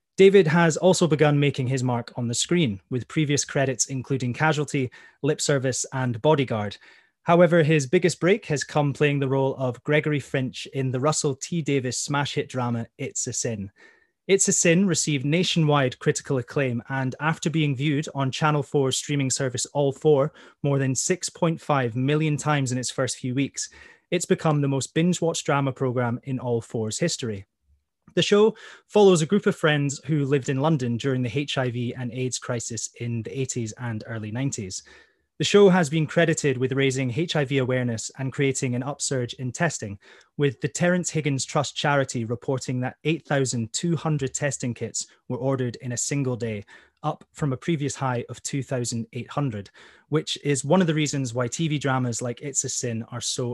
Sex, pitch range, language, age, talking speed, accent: male, 125-155 Hz, English, 20-39, 175 wpm, British